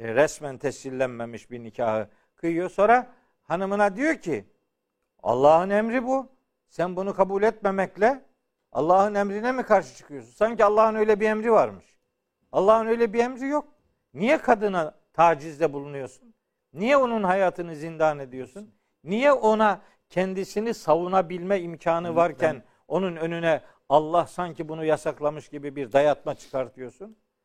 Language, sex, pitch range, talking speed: Turkish, male, 150-215 Hz, 125 wpm